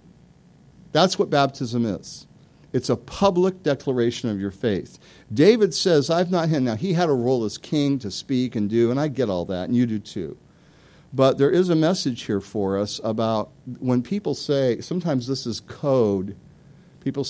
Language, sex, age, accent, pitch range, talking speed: English, male, 50-69, American, 110-145 Hz, 185 wpm